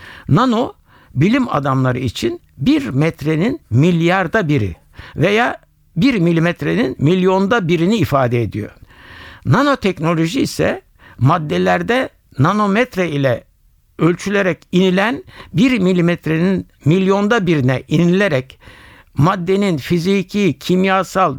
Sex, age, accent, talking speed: male, 60-79, native, 85 wpm